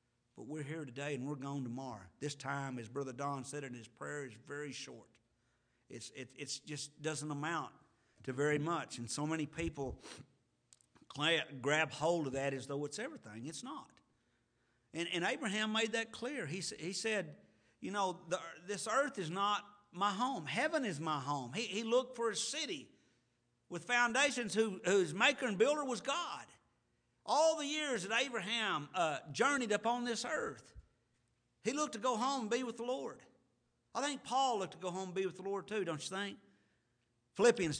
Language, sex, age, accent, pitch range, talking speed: English, male, 50-69, American, 135-200 Hz, 185 wpm